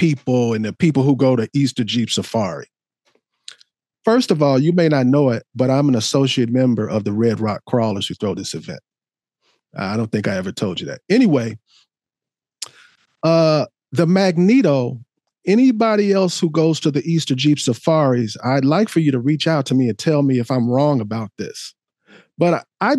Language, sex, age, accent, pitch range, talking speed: English, male, 40-59, American, 135-170 Hz, 190 wpm